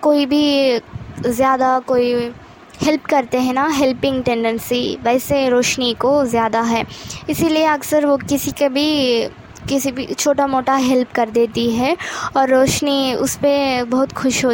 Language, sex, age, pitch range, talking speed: Hindi, female, 20-39, 245-285 Hz, 150 wpm